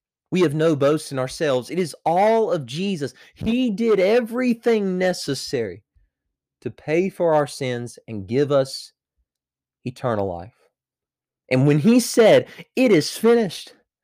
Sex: male